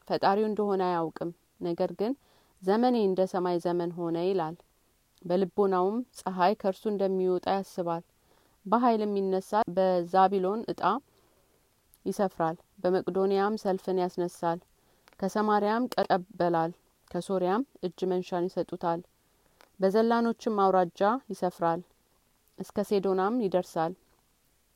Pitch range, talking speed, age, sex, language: 180-205 Hz, 90 wpm, 30-49, female, Amharic